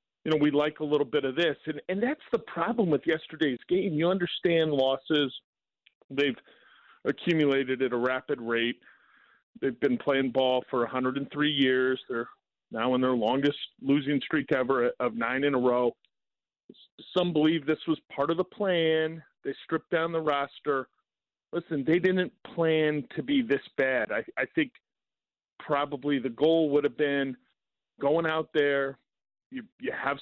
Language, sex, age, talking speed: English, male, 40-59, 165 wpm